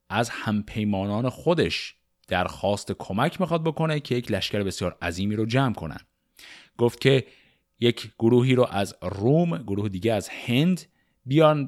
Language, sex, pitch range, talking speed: Persian, male, 100-140 Hz, 140 wpm